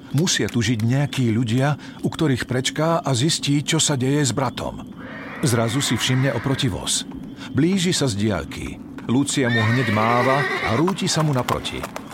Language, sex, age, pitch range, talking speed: Slovak, male, 50-69, 115-155 Hz, 165 wpm